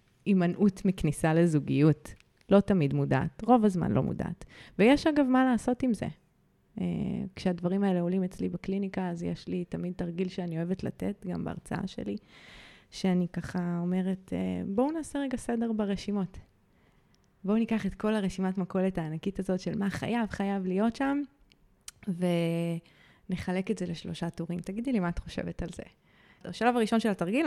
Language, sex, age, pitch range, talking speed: Hebrew, female, 20-39, 175-220 Hz, 155 wpm